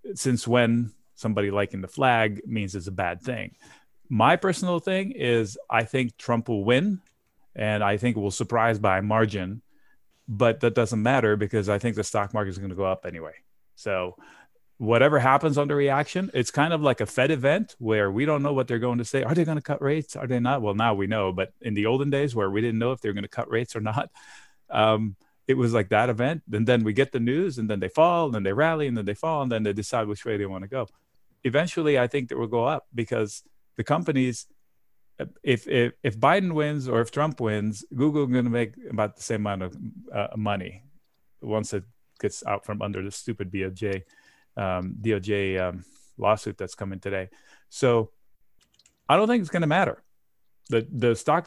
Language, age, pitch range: English, 30-49, 105-140 Hz